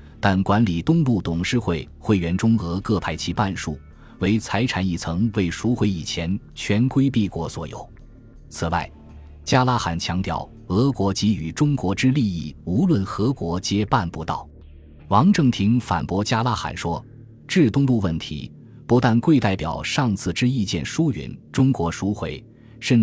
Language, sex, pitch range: Chinese, male, 85-120 Hz